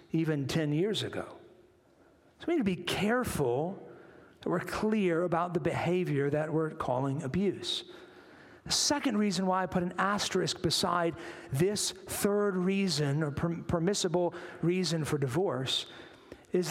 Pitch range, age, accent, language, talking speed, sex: 140-185 Hz, 50-69, American, English, 135 wpm, male